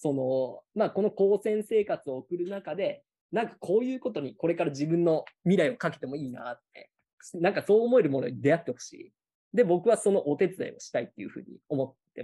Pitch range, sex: 155-215 Hz, male